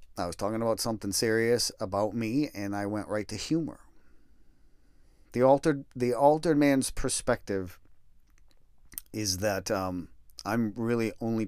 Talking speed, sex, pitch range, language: 135 wpm, male, 90-120 Hz, English